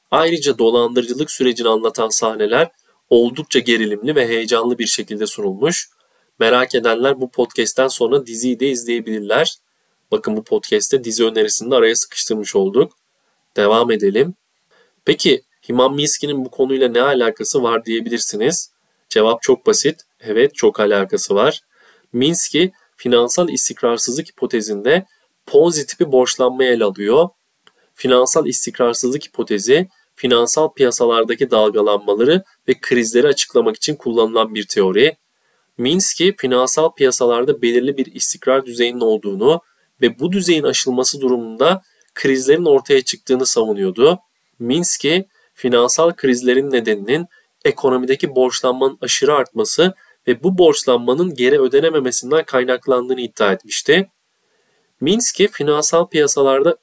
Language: Turkish